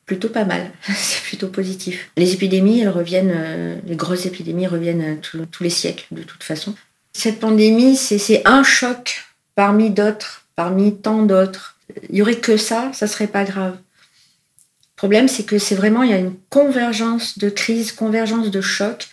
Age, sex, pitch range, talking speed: 40-59, female, 175-215 Hz, 180 wpm